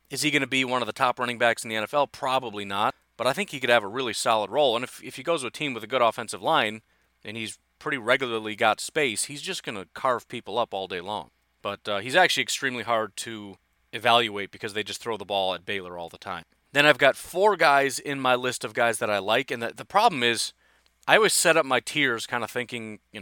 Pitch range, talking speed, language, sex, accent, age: 105-135 Hz, 265 wpm, English, male, American, 30-49